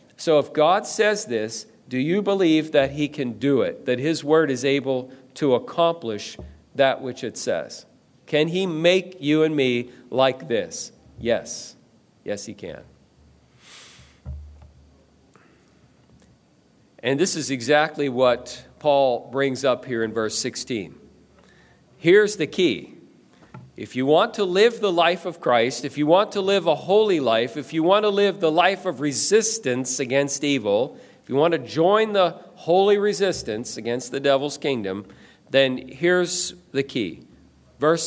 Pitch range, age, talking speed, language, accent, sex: 125-180 Hz, 40-59, 150 wpm, English, American, male